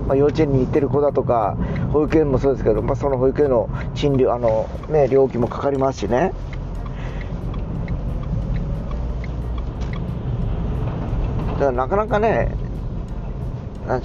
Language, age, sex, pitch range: Japanese, 40-59, male, 105-150 Hz